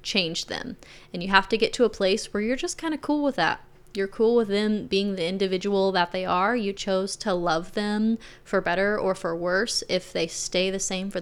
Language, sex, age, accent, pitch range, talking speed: English, female, 20-39, American, 185-220 Hz, 235 wpm